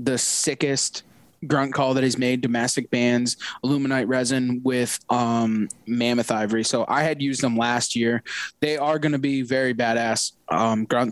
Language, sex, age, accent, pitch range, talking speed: English, male, 20-39, American, 130-155 Hz, 165 wpm